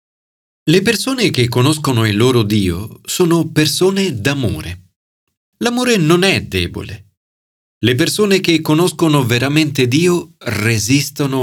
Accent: native